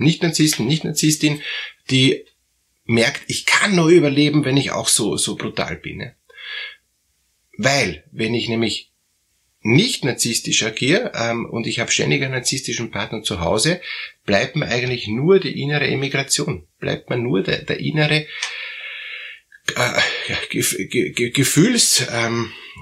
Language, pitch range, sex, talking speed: German, 115-145 Hz, male, 120 wpm